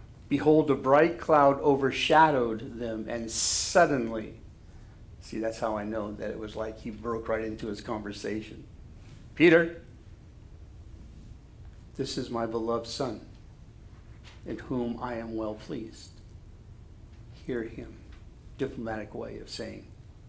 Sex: male